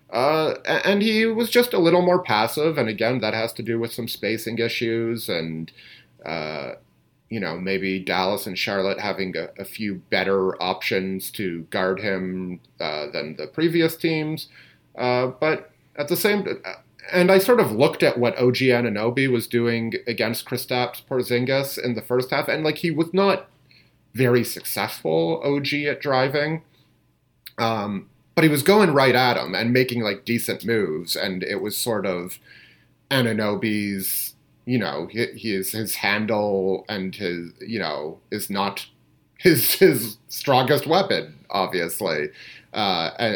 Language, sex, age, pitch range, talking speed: English, male, 30-49, 100-135 Hz, 155 wpm